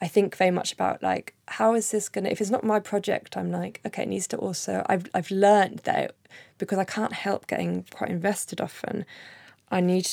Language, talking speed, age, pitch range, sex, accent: English, 220 wpm, 20-39, 165-195 Hz, female, British